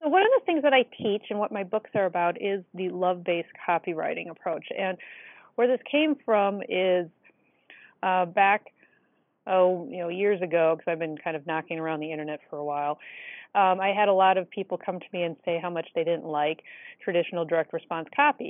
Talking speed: 210 wpm